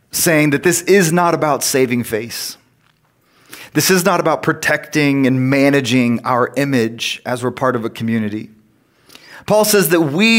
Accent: American